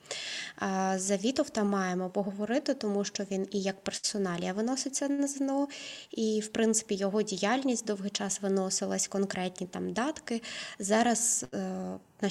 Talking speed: 125 wpm